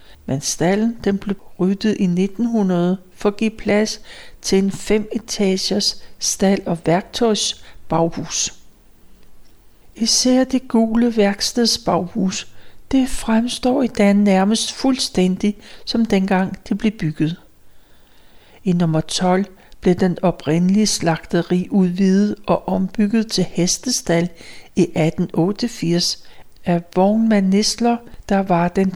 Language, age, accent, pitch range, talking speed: Danish, 60-79, native, 175-220 Hz, 110 wpm